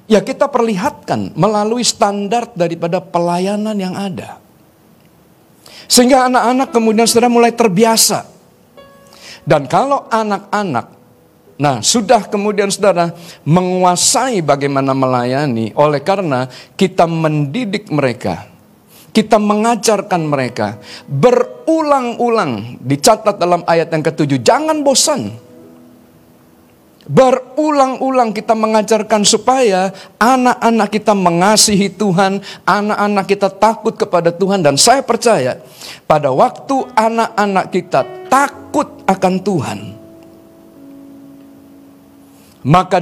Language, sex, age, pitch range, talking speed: Indonesian, male, 50-69, 155-225 Hz, 90 wpm